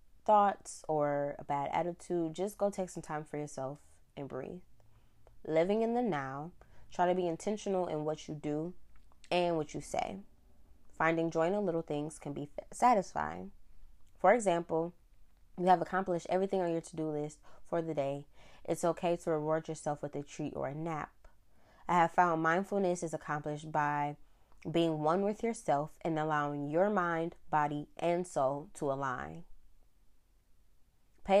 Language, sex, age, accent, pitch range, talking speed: English, female, 20-39, American, 145-175 Hz, 160 wpm